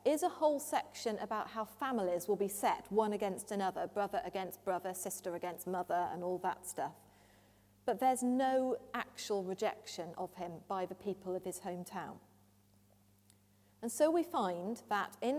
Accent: British